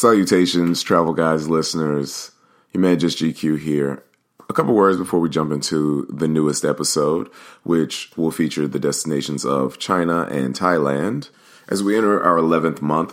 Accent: American